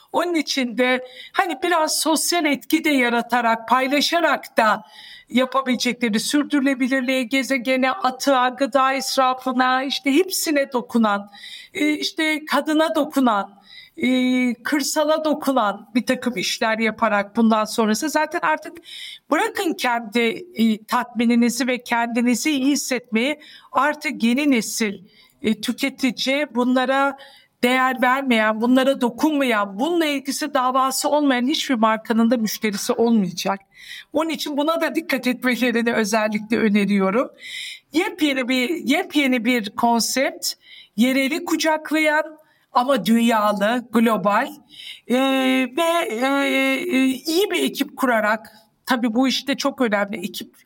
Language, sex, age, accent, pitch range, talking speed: Turkish, female, 60-79, native, 235-300 Hz, 105 wpm